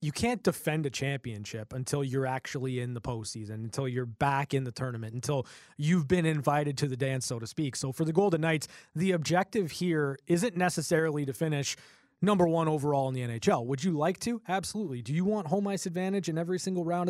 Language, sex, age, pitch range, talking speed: English, male, 20-39, 135-175 Hz, 210 wpm